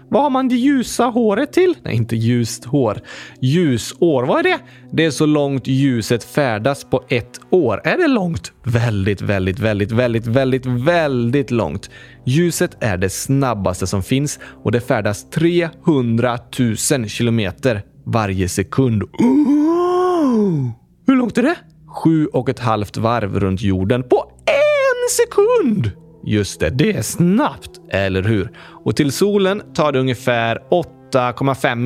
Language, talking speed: Swedish, 145 wpm